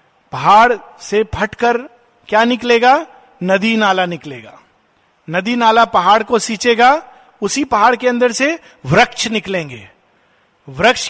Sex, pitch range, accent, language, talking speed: male, 175-235 Hz, native, Hindi, 115 wpm